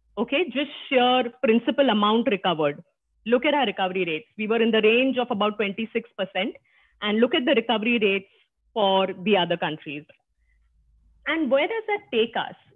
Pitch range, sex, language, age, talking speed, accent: 200-270 Hz, female, English, 30-49, 165 wpm, Indian